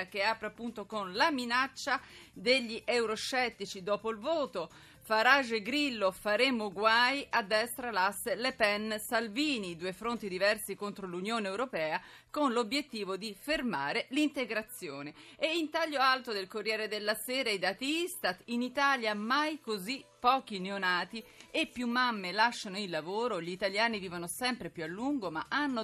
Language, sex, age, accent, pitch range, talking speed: Italian, female, 40-59, native, 200-265 Hz, 150 wpm